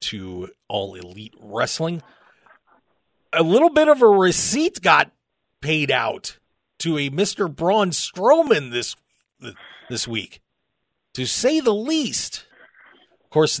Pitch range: 110-155 Hz